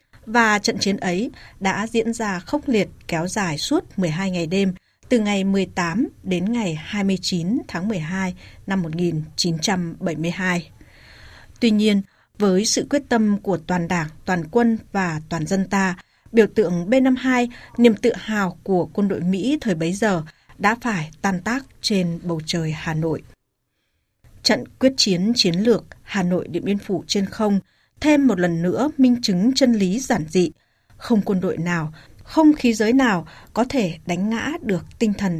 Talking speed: 170 wpm